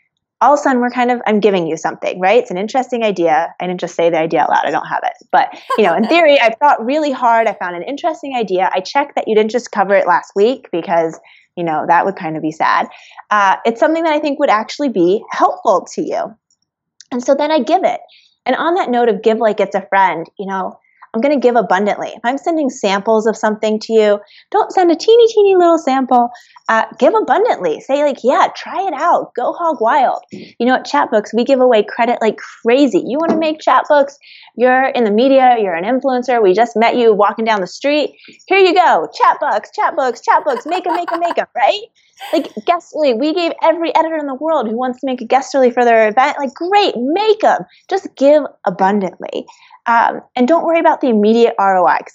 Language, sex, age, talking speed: English, female, 20-39, 230 wpm